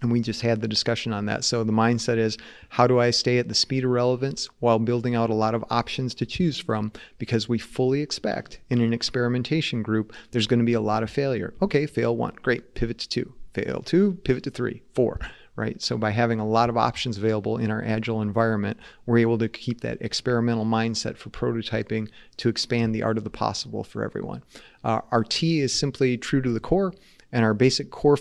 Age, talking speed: 30-49, 220 wpm